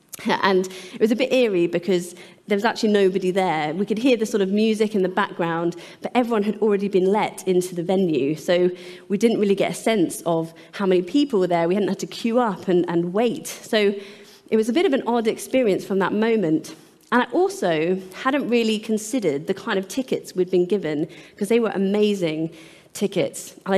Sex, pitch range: female, 180-225 Hz